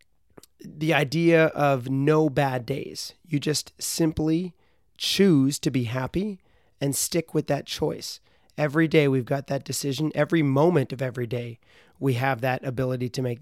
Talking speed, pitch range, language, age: 155 wpm, 130-155 Hz, English, 30-49